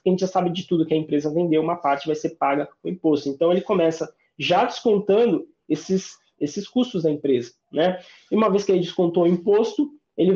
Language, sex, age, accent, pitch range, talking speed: Portuguese, male, 20-39, Brazilian, 150-205 Hz, 215 wpm